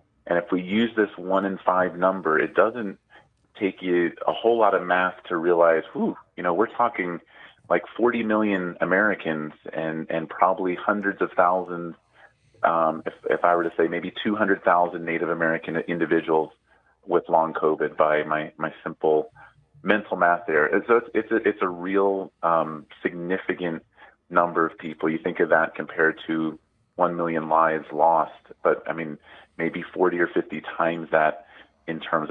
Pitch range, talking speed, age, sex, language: 80-95 Hz, 170 wpm, 30-49, male, English